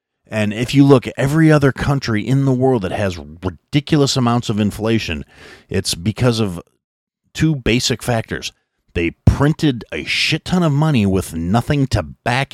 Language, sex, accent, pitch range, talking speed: English, male, American, 90-120 Hz, 165 wpm